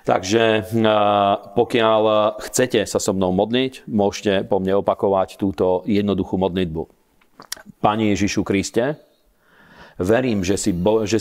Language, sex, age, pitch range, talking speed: Slovak, male, 40-59, 95-110 Hz, 120 wpm